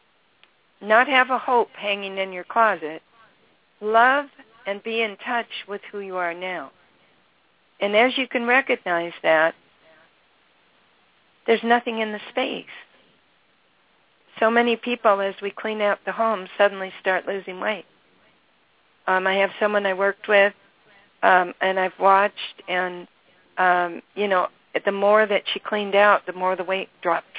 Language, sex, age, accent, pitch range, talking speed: English, female, 50-69, American, 185-220 Hz, 150 wpm